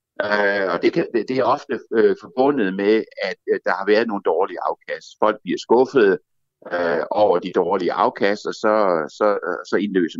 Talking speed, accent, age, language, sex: 180 wpm, native, 60-79, Danish, male